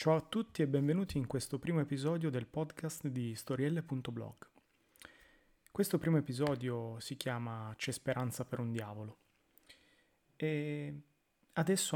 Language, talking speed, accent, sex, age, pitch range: Italian, 125 wpm, native, male, 30-49, 120-155 Hz